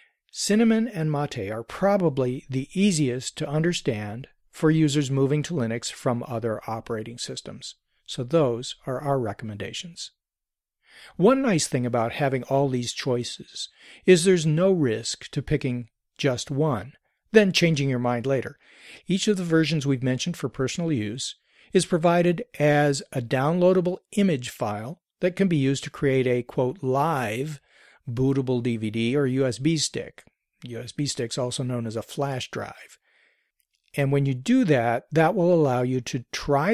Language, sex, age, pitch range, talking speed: English, male, 50-69, 125-165 Hz, 150 wpm